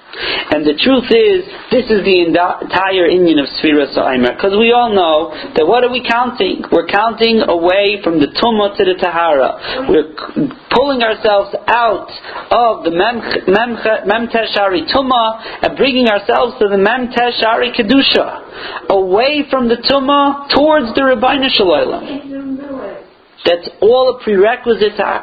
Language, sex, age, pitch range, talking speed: Italian, male, 40-59, 195-240 Hz, 150 wpm